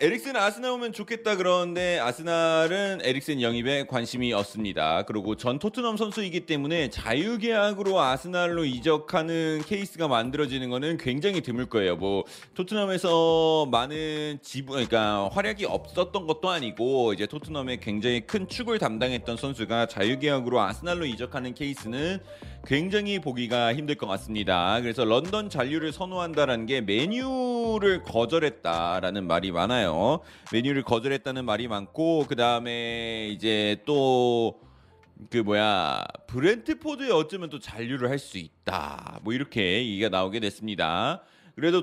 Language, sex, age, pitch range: Korean, male, 30-49, 120-185 Hz